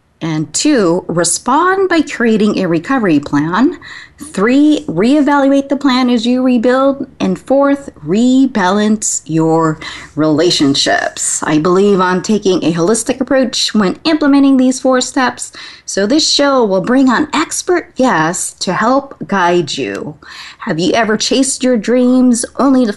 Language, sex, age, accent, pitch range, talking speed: English, female, 20-39, American, 180-260 Hz, 135 wpm